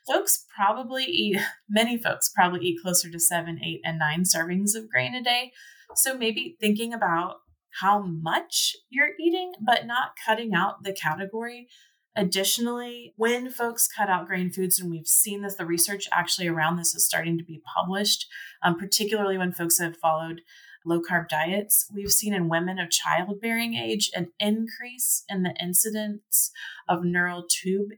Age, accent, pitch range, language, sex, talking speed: 30-49, American, 170-210 Hz, English, female, 165 wpm